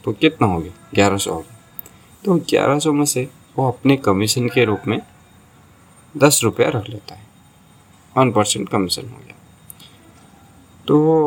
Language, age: Hindi, 20-39